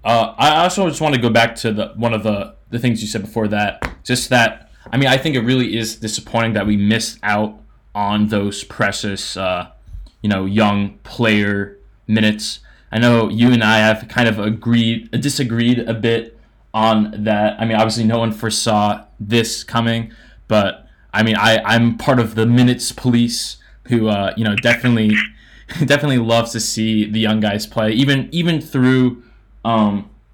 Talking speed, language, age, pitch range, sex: 180 wpm, English, 20-39, 110-125 Hz, male